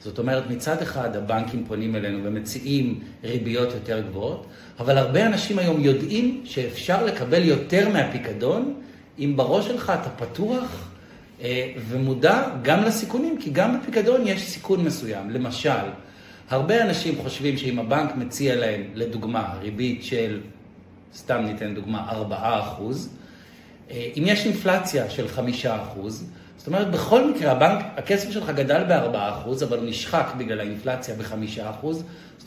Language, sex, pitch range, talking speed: Hebrew, male, 115-175 Hz, 130 wpm